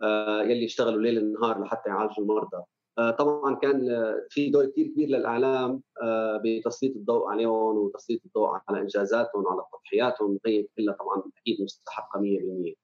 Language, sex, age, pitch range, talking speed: Arabic, male, 30-49, 105-130 Hz, 130 wpm